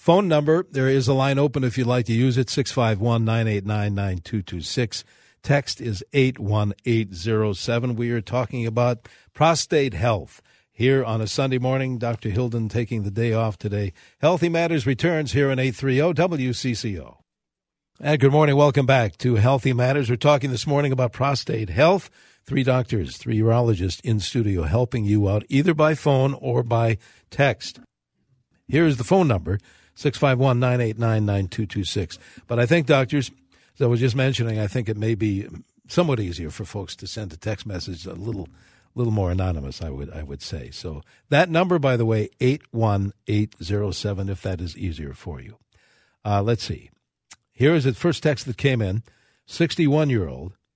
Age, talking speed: 60-79, 155 wpm